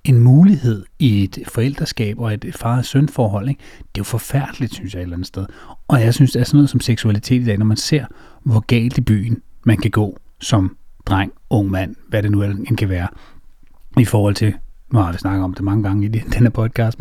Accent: native